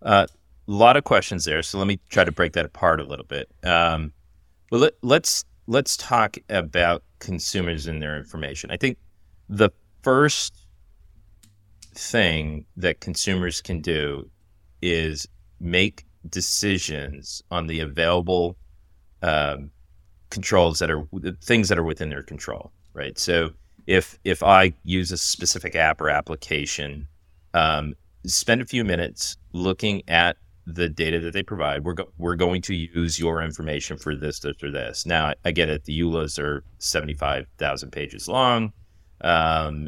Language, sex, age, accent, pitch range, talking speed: English, male, 30-49, American, 80-95 Hz, 150 wpm